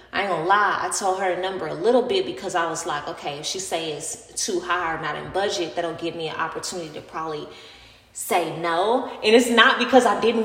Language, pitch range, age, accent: English, 180-235 Hz, 20-39, American